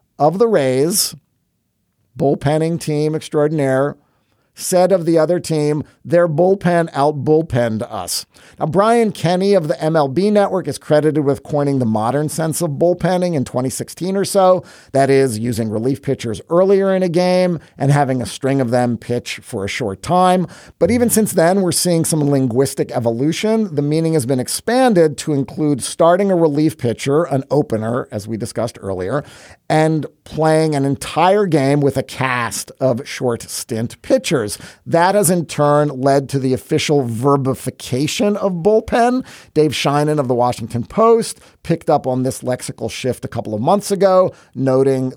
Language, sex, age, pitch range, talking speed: English, male, 50-69, 125-175 Hz, 160 wpm